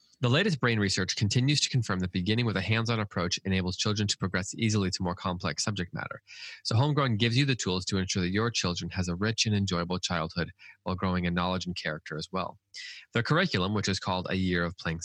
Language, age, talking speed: English, 20-39, 225 wpm